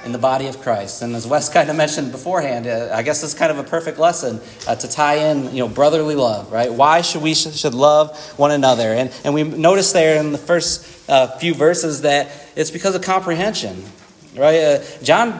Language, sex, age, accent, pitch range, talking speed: English, male, 30-49, American, 150-190 Hz, 205 wpm